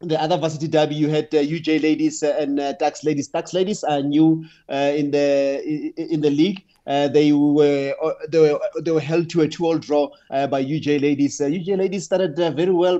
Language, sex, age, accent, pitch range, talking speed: English, male, 30-49, South African, 145-170 Hz, 230 wpm